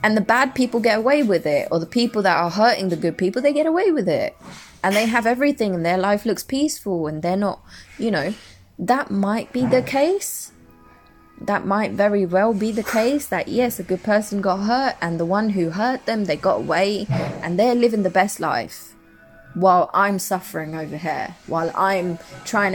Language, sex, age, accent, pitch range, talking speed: English, female, 20-39, British, 165-210 Hz, 205 wpm